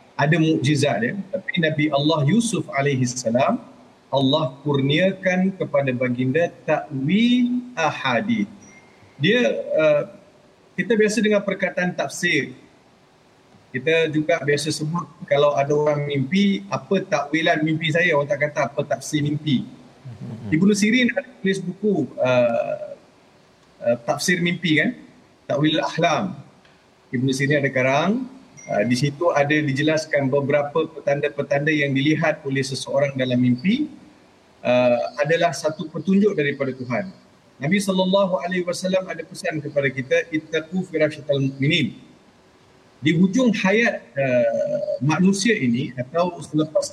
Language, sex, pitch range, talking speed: Malayalam, male, 140-195 Hz, 120 wpm